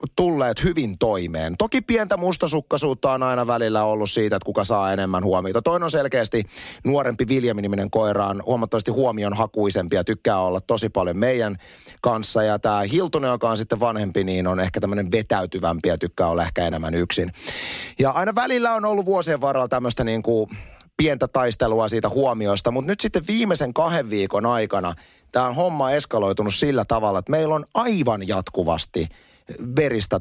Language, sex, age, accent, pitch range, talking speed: Finnish, male, 30-49, native, 100-145 Hz, 165 wpm